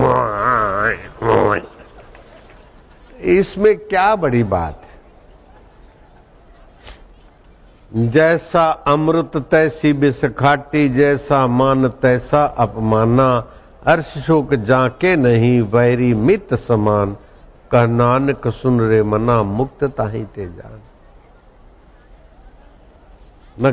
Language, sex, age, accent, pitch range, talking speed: Hindi, male, 60-79, native, 115-145 Hz, 70 wpm